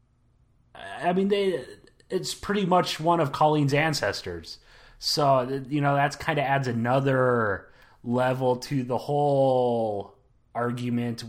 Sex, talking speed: male, 120 wpm